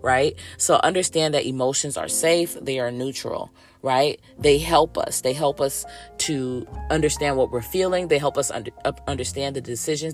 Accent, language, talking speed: American, English, 165 wpm